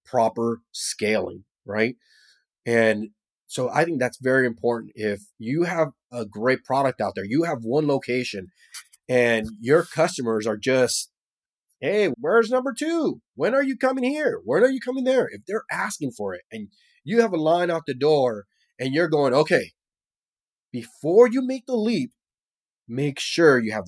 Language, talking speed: English, 170 wpm